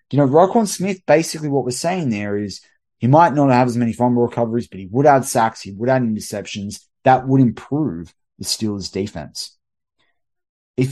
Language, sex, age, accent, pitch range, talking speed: English, male, 20-39, Australian, 95-125 Hz, 185 wpm